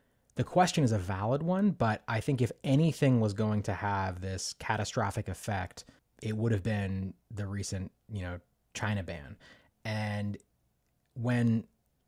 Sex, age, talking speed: male, 30-49, 150 wpm